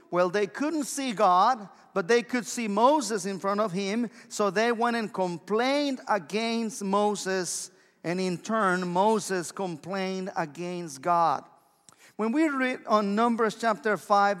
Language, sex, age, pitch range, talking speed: English, male, 50-69, 190-245 Hz, 145 wpm